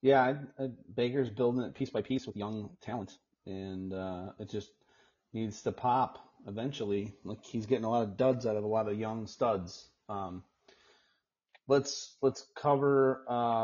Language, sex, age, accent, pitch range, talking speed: English, male, 30-49, American, 105-130 Hz, 165 wpm